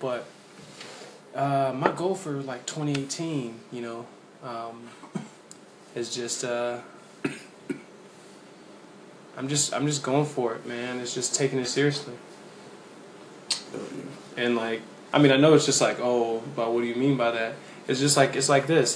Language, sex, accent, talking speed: English, male, American, 155 wpm